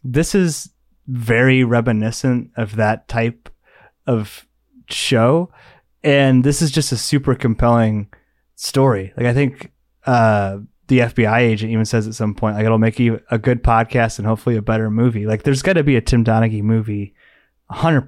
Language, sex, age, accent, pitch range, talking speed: English, male, 20-39, American, 115-140 Hz, 175 wpm